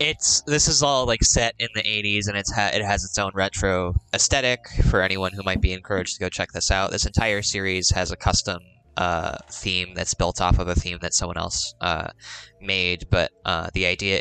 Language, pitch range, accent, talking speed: English, 90-100 Hz, American, 220 wpm